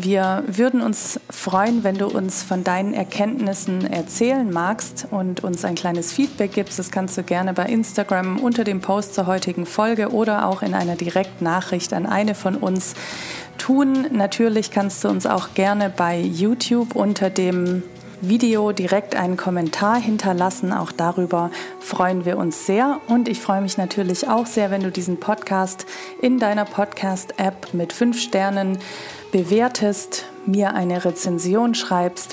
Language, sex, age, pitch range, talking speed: German, female, 40-59, 180-210 Hz, 155 wpm